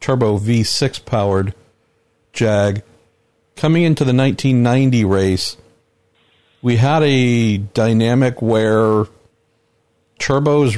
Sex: male